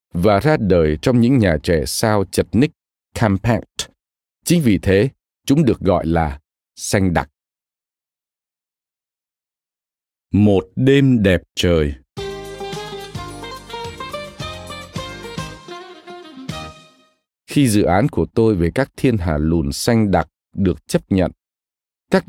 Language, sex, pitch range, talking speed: Vietnamese, male, 80-130 Hz, 110 wpm